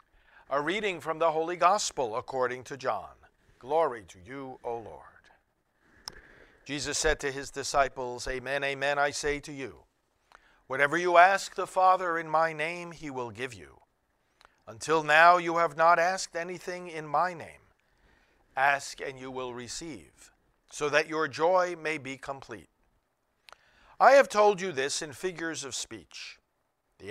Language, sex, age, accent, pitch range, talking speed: English, male, 50-69, American, 135-185 Hz, 155 wpm